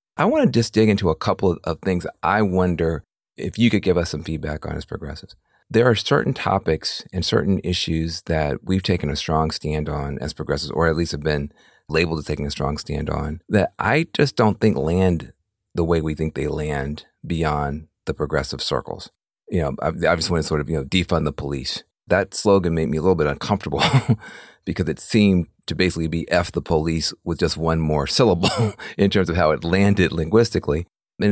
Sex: male